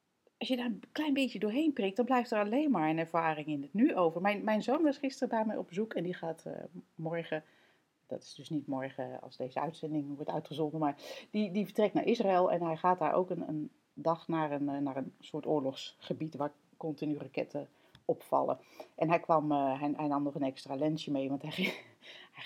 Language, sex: Dutch, female